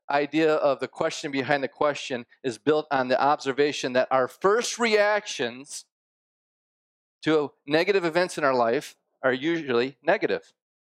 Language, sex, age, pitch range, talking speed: English, male, 40-59, 140-185 Hz, 135 wpm